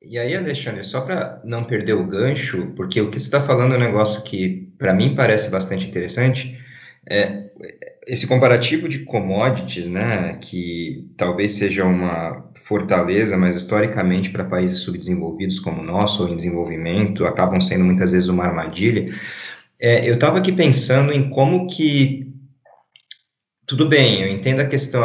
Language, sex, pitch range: Portuguese, male, 95-130 Hz